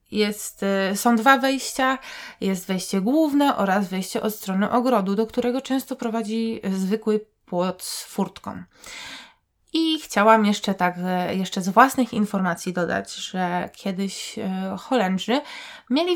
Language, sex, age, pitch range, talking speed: Polish, female, 20-39, 190-235 Hz, 125 wpm